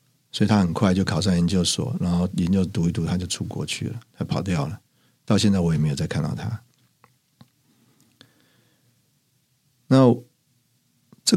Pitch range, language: 95-125 Hz, Chinese